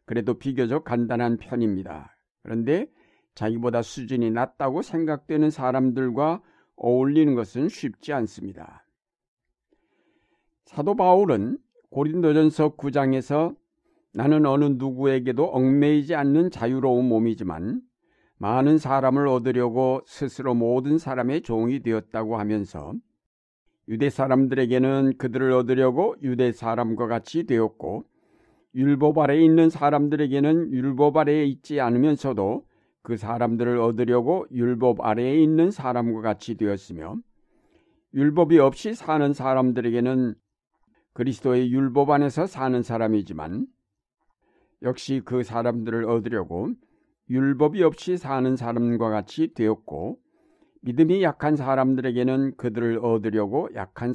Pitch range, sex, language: 120-155 Hz, male, Korean